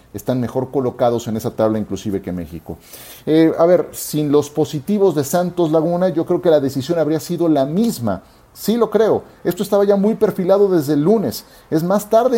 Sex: male